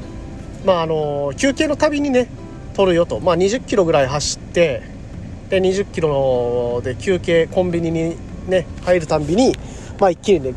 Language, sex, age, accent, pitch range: Japanese, male, 40-59, native, 140-215 Hz